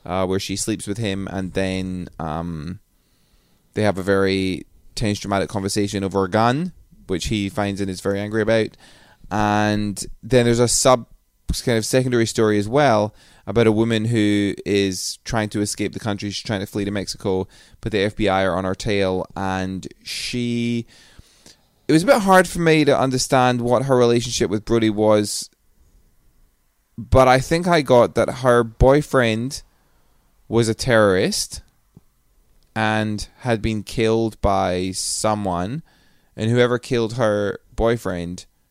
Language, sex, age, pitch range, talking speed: English, male, 20-39, 95-115 Hz, 155 wpm